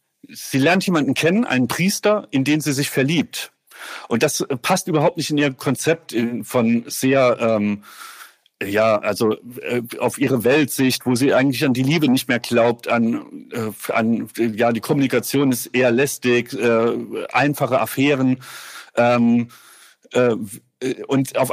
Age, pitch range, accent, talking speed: 40-59, 125-175 Hz, German, 150 wpm